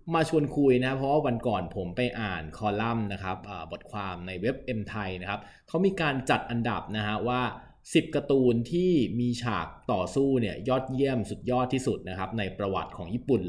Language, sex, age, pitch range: Thai, male, 20-39, 100-130 Hz